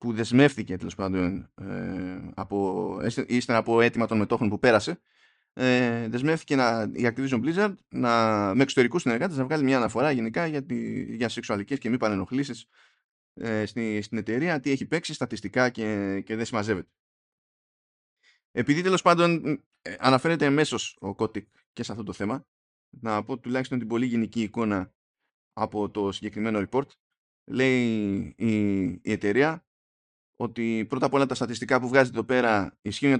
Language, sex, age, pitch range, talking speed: Greek, male, 20-39, 105-135 Hz, 160 wpm